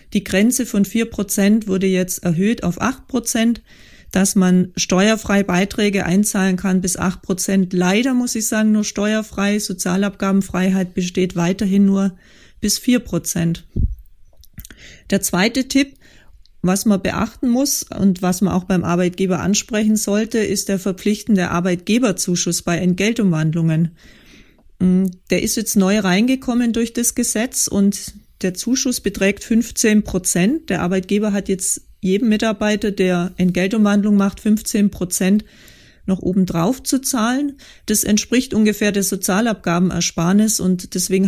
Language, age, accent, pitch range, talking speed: German, 30-49, German, 185-220 Hz, 130 wpm